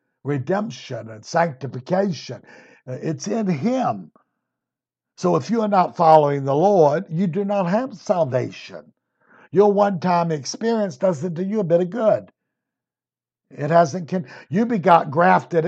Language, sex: English, male